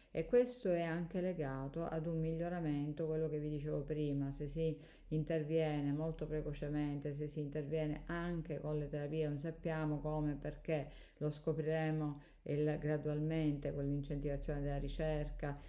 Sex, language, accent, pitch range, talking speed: female, Italian, native, 145-160 Hz, 145 wpm